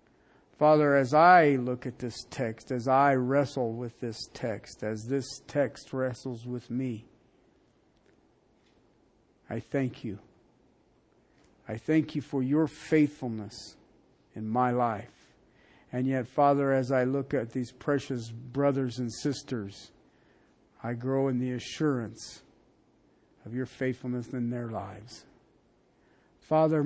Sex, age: male, 50-69